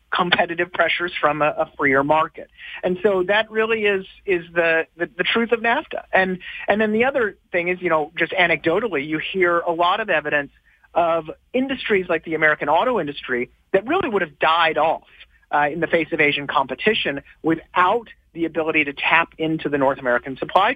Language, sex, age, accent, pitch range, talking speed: English, male, 40-59, American, 155-195 Hz, 190 wpm